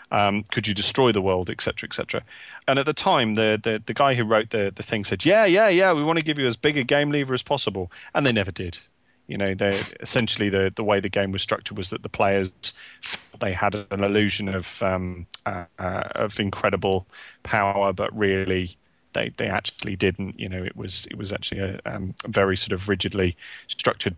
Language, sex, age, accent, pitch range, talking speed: English, male, 30-49, British, 100-125 Hz, 225 wpm